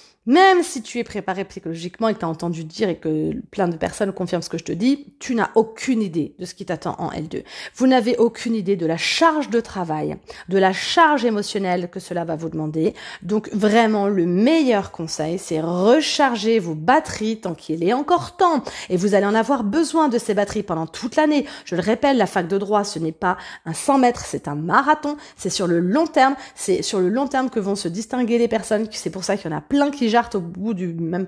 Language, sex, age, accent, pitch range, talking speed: French, female, 30-49, French, 175-245 Hz, 235 wpm